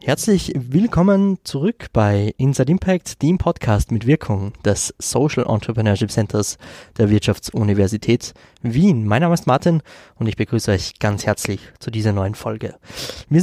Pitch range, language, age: 105-145 Hz, German, 20-39